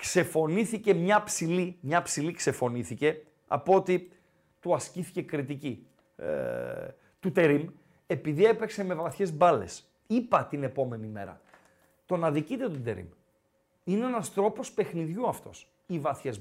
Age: 40-59